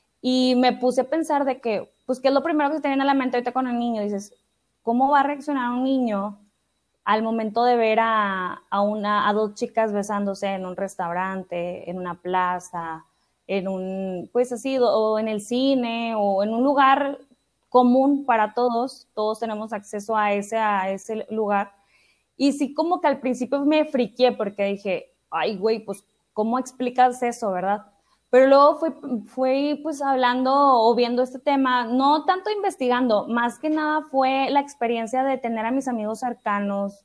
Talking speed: 175 wpm